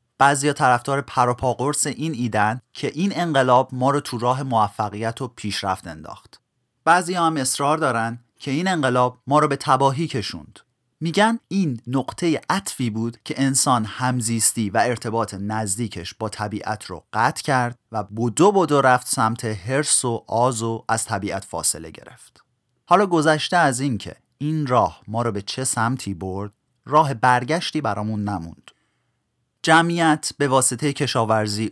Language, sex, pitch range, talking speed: Persian, male, 105-140 Hz, 150 wpm